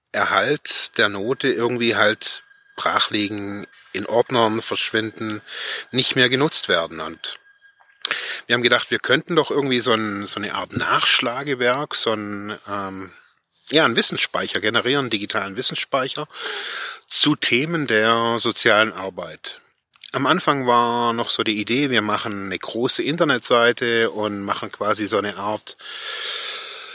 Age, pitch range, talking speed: 30-49, 110-150 Hz, 135 wpm